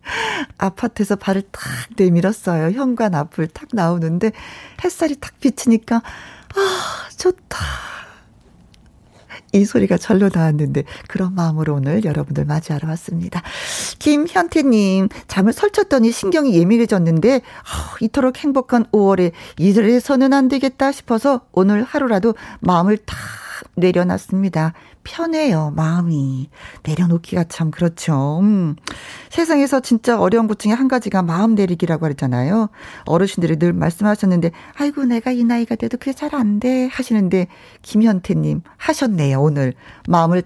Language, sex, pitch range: Korean, female, 175-260 Hz